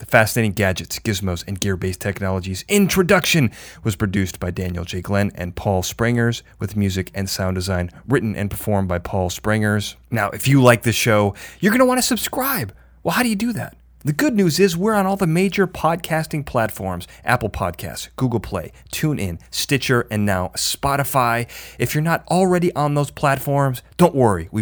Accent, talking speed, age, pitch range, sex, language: American, 185 wpm, 30-49, 100-145 Hz, male, English